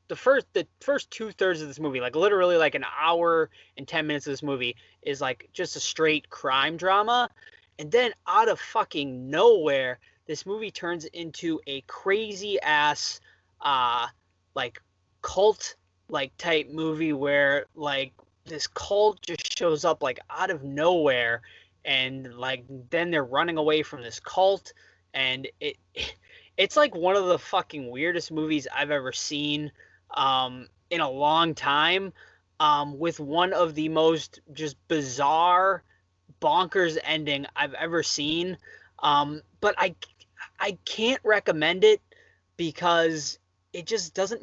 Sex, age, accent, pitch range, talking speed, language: male, 20-39, American, 140-185 Hz, 145 wpm, English